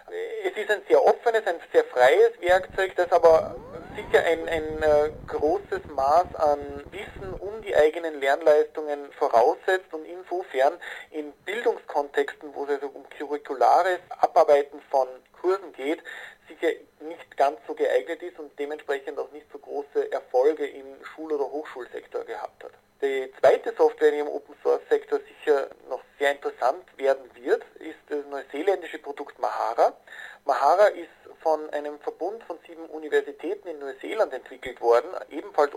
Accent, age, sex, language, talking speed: German, 50-69, male, German, 140 wpm